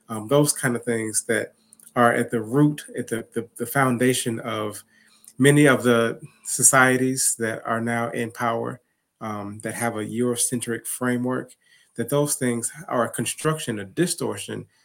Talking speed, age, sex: 160 wpm, 30-49, male